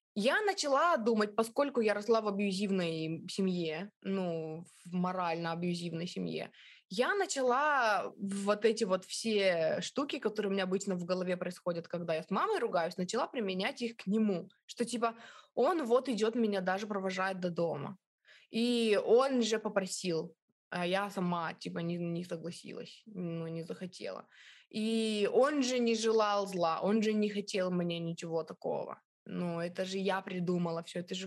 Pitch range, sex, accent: 180-225 Hz, female, native